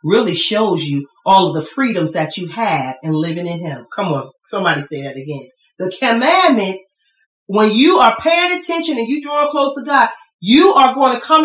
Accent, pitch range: American, 190-275 Hz